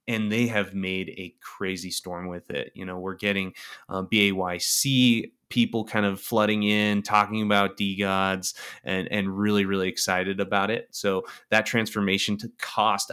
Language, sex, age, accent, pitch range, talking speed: English, male, 30-49, American, 95-105 Hz, 160 wpm